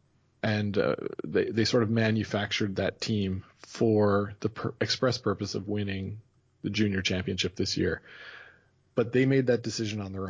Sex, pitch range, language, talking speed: male, 100-115 Hz, English, 155 wpm